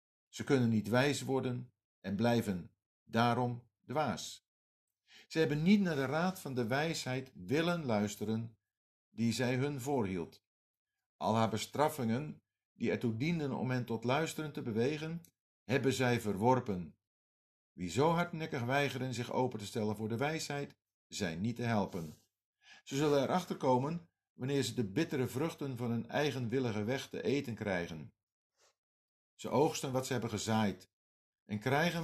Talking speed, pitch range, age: 145 wpm, 110-145 Hz, 50-69